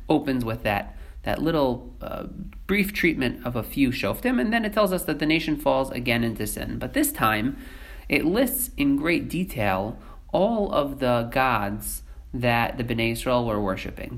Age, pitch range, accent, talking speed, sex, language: 30-49, 100-155 Hz, American, 180 wpm, male, English